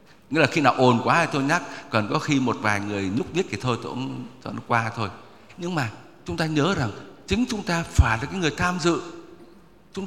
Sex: male